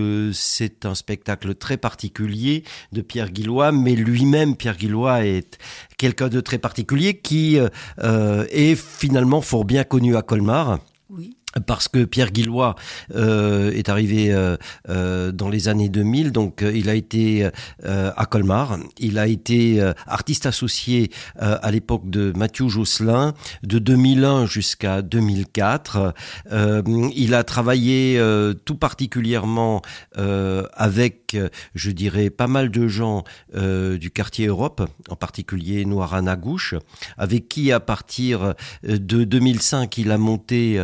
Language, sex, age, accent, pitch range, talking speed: French, male, 50-69, French, 100-120 Hz, 135 wpm